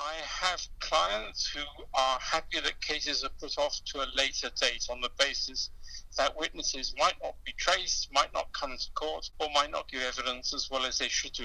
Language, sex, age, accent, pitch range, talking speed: English, male, 60-79, British, 135-160 Hz, 210 wpm